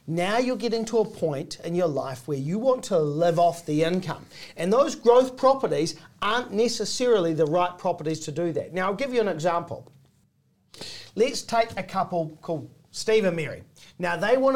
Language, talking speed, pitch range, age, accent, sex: English, 190 wpm, 165-230 Hz, 40-59, Australian, male